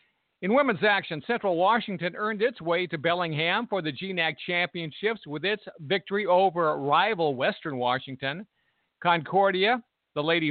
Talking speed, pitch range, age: 135 wpm, 155-205 Hz, 50-69